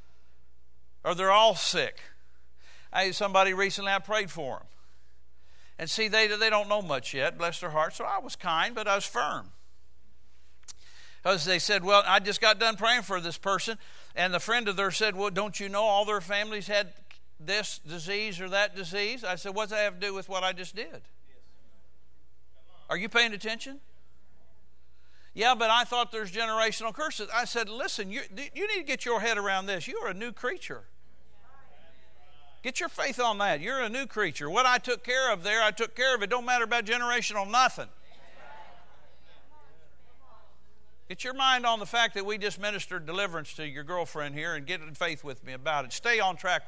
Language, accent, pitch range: English, American, 135-220 Hz